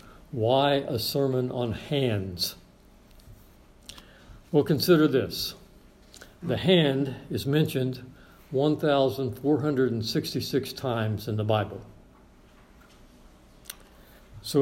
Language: English